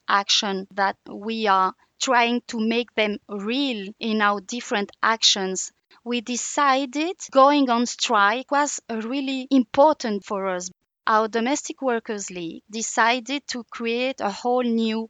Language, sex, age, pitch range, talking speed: English, female, 30-49, 210-270 Hz, 130 wpm